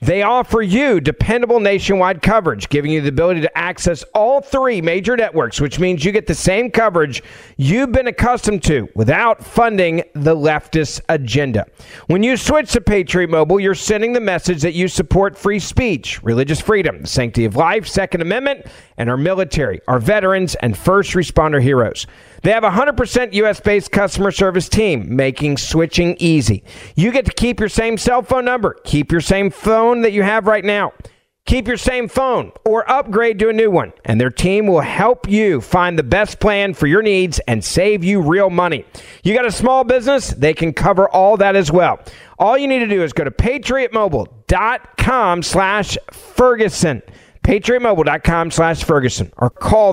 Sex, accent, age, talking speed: male, American, 40-59, 180 wpm